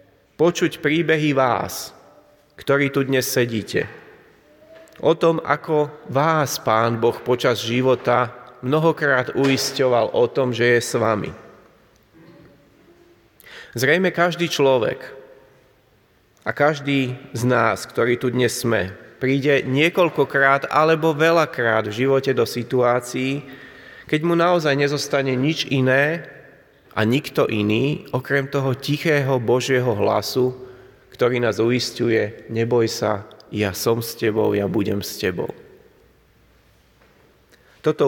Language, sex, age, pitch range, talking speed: Slovak, male, 30-49, 120-145 Hz, 110 wpm